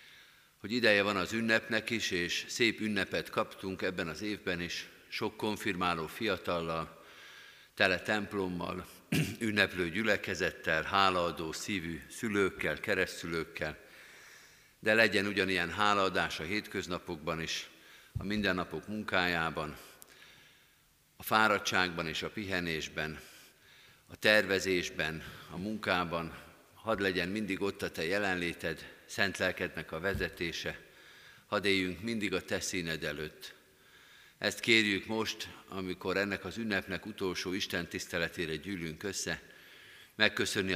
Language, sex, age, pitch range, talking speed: Hungarian, male, 50-69, 85-105 Hz, 110 wpm